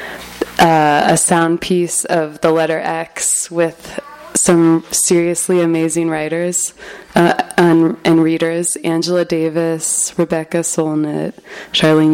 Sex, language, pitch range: female, English, 160-190 Hz